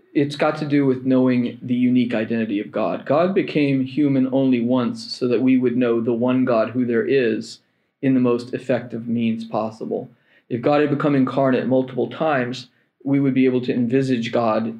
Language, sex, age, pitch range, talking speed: English, male, 40-59, 115-140 Hz, 190 wpm